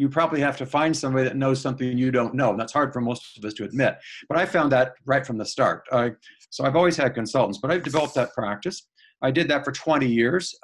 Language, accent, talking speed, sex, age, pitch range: English, American, 255 wpm, male, 50-69, 125-145 Hz